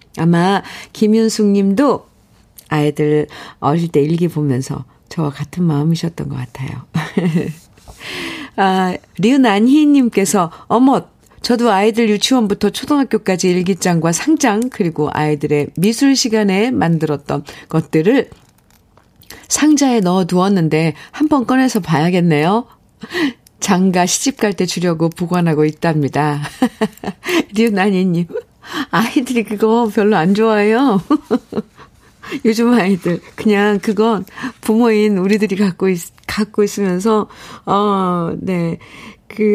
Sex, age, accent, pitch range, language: female, 50-69, native, 170-235 Hz, Korean